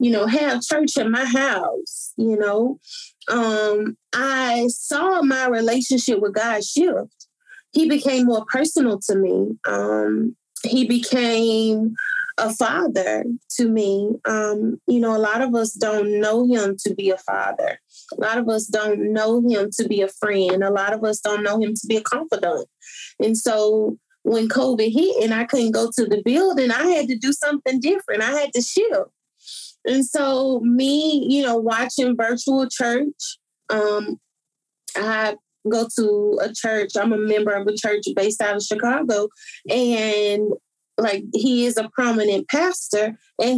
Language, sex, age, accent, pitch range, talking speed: English, female, 30-49, American, 215-275 Hz, 165 wpm